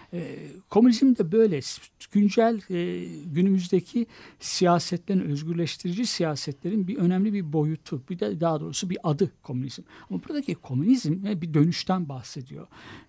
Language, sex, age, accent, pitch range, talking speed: Turkish, male, 60-79, native, 135-190 Hz, 120 wpm